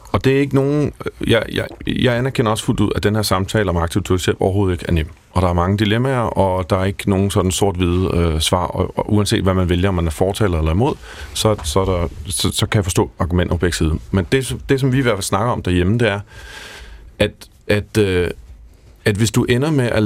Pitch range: 90-110 Hz